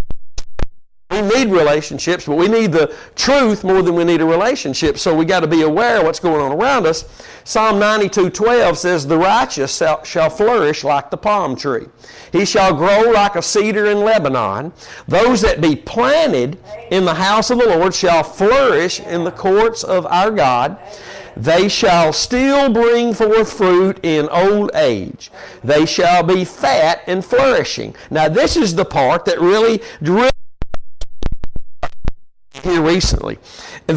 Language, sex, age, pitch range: English, male, 50-69, 170-230 Hz